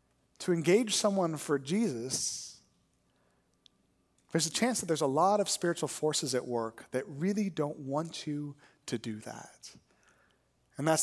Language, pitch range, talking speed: English, 155-235 Hz, 145 wpm